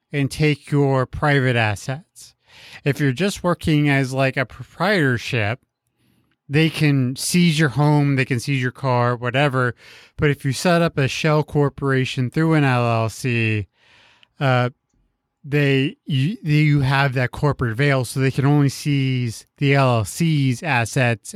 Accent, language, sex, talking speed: American, English, male, 145 wpm